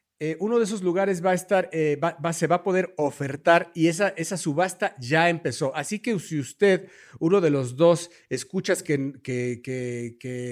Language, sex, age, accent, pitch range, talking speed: Spanish, male, 50-69, Mexican, 140-180 Hz, 200 wpm